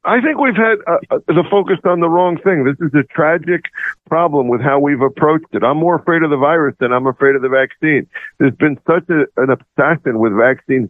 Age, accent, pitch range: 50-69, American, 135-170 Hz